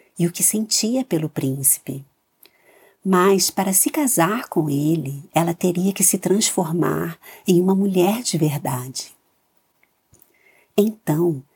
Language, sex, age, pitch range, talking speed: Portuguese, female, 50-69, 155-205 Hz, 120 wpm